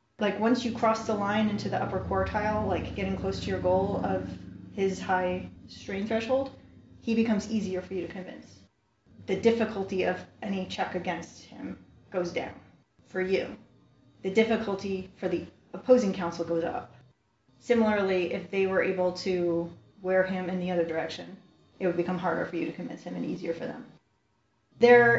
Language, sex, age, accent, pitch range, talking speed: English, female, 30-49, American, 180-220 Hz, 175 wpm